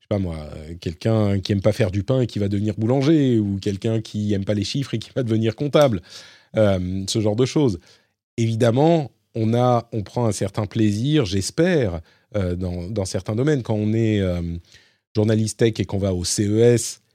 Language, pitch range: French, 100-120 Hz